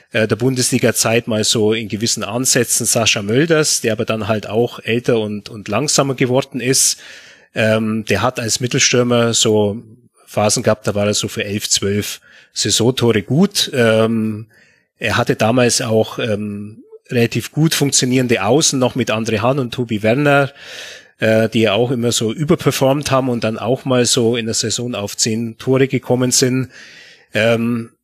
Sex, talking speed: male, 160 wpm